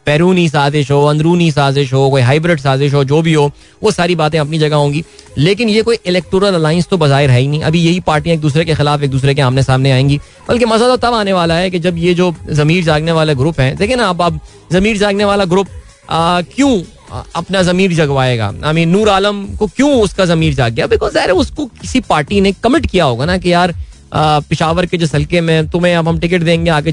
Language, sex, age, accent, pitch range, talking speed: Hindi, male, 20-39, native, 150-190 Hz, 230 wpm